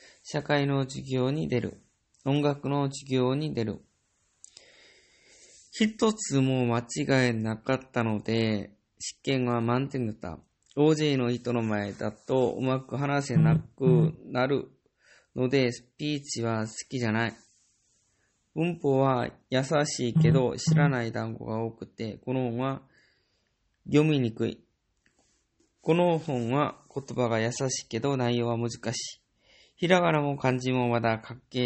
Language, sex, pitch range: English, male, 115-140 Hz